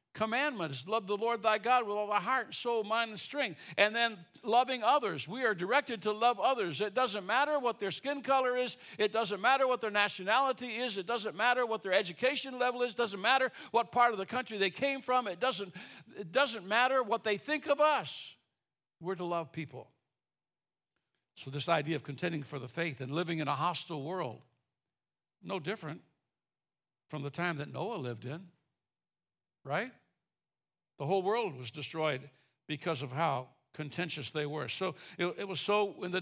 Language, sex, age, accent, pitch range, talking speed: English, male, 60-79, American, 160-245 Hz, 190 wpm